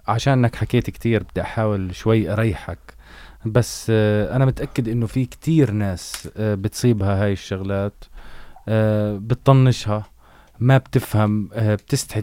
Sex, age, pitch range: male, 20-39, 100-125 Hz